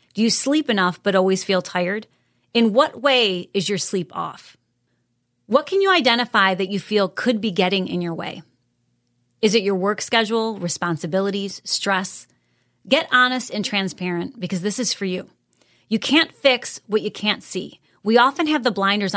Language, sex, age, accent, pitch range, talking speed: English, female, 30-49, American, 185-235 Hz, 175 wpm